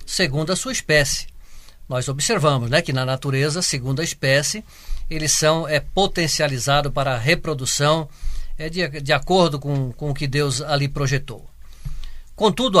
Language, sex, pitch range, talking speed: Portuguese, male, 135-180 Hz, 150 wpm